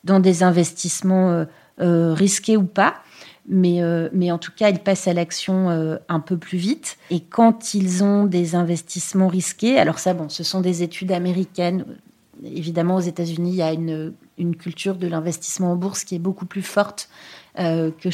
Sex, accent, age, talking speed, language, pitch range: female, French, 30-49, 190 wpm, French, 175-225 Hz